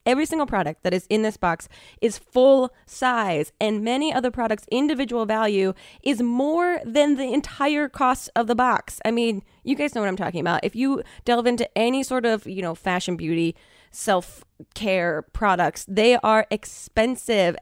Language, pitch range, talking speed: English, 185-250 Hz, 175 wpm